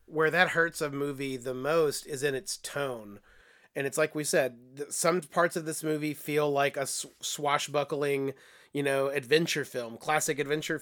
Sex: male